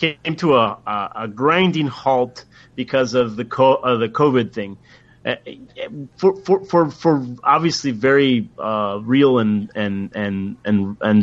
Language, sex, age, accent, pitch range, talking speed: English, male, 30-49, American, 125-175 Hz, 130 wpm